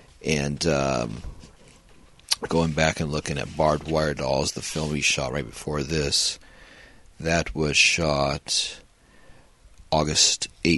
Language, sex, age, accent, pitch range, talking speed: English, male, 30-49, American, 75-85 Hz, 115 wpm